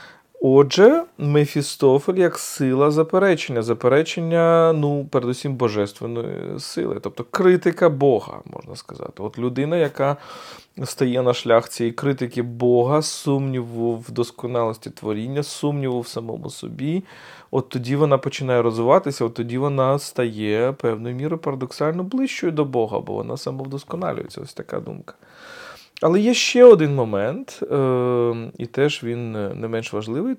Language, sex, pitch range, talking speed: Ukrainian, male, 120-160 Hz, 125 wpm